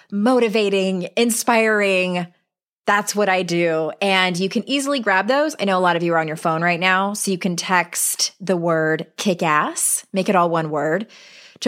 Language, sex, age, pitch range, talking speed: English, female, 20-39, 165-215 Hz, 195 wpm